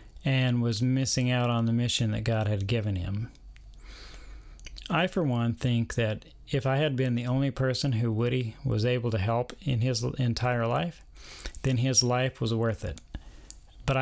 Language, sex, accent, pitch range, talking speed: English, male, American, 110-130 Hz, 175 wpm